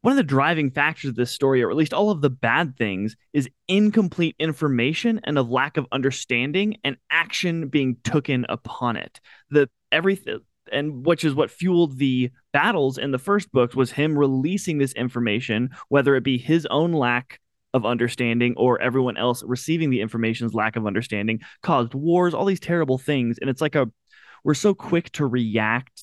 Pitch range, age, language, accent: 120-150 Hz, 20-39, English, American